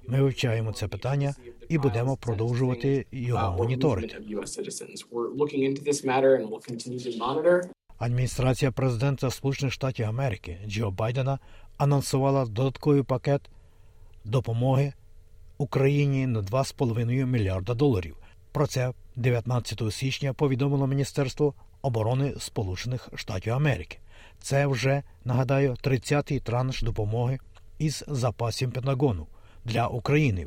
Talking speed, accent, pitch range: 90 wpm, native, 110-135 Hz